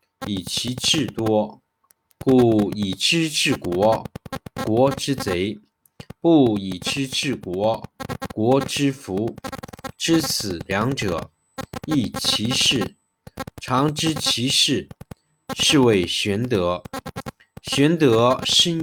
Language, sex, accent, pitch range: Chinese, male, native, 110-150 Hz